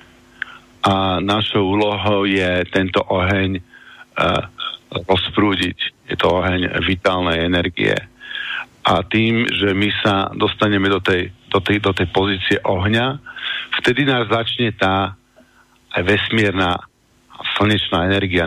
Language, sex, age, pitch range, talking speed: Slovak, male, 50-69, 90-105 Hz, 110 wpm